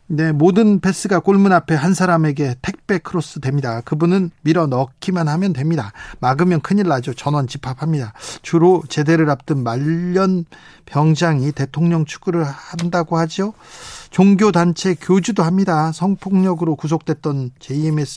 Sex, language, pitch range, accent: male, Korean, 150-190 Hz, native